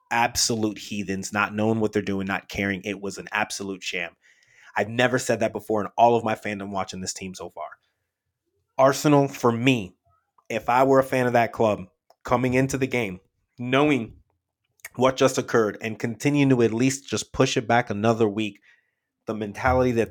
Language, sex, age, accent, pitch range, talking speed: English, male, 30-49, American, 100-120 Hz, 185 wpm